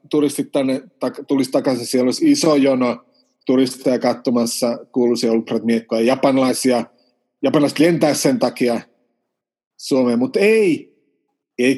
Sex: male